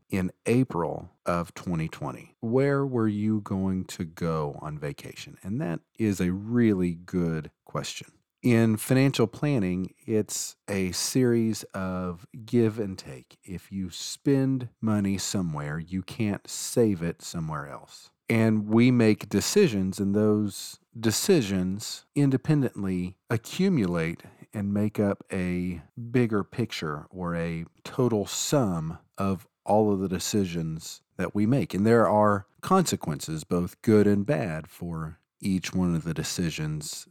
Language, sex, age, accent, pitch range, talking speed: English, male, 40-59, American, 90-115 Hz, 130 wpm